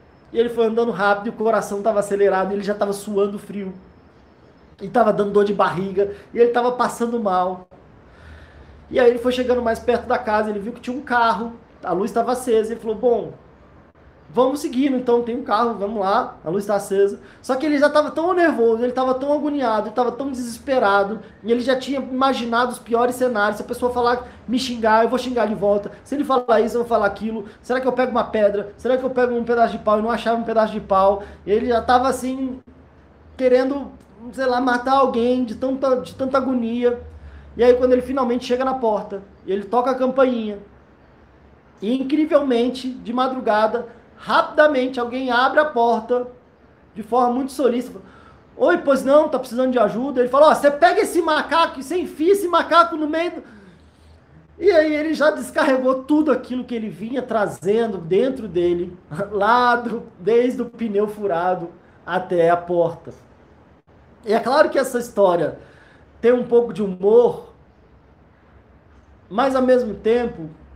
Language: Portuguese